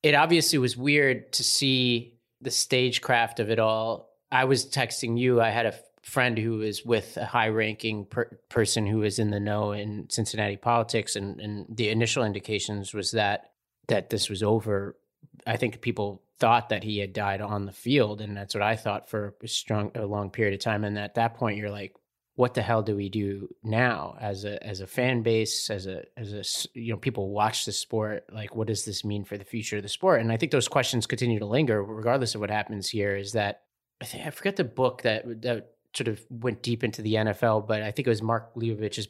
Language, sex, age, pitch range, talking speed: English, male, 30-49, 105-120 Hz, 225 wpm